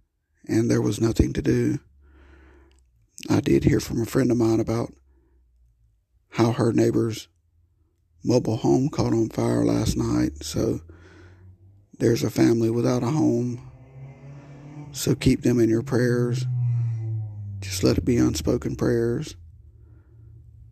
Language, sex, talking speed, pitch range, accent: English, male, 125 wpm, 90-115 Hz, American